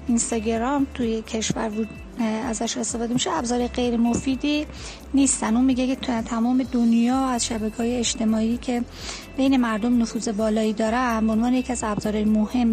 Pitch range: 225-250 Hz